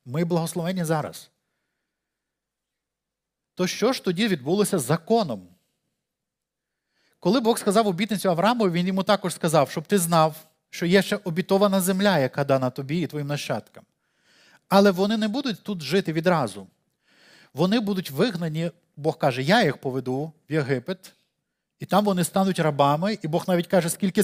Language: Ukrainian